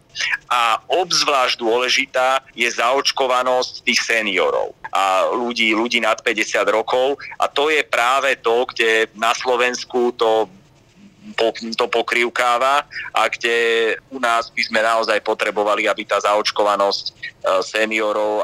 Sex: male